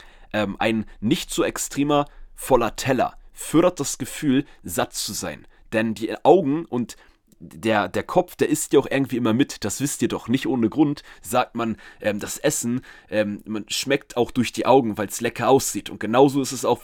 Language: German